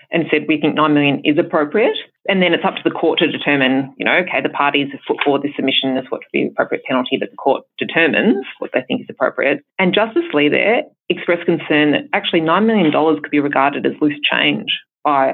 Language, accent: English, Australian